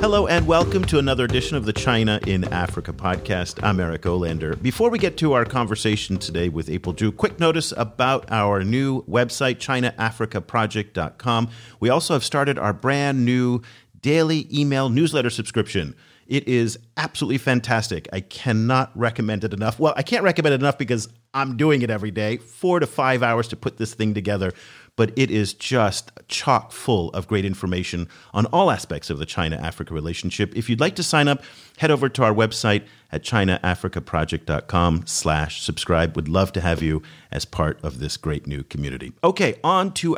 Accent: American